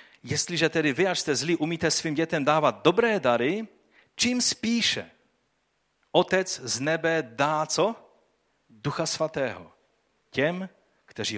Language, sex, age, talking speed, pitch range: Czech, male, 40-59, 120 wpm, 110-160 Hz